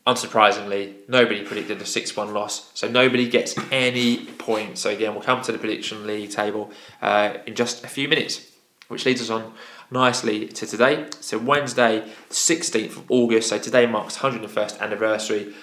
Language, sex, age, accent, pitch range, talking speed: English, male, 20-39, British, 105-125 Hz, 165 wpm